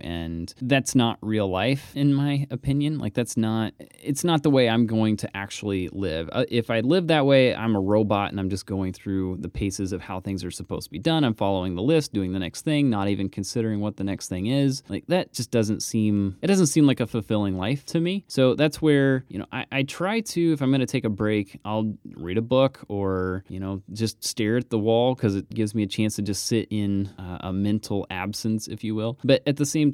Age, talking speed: 20-39, 245 wpm